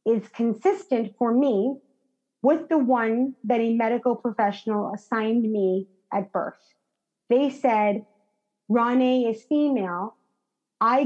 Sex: female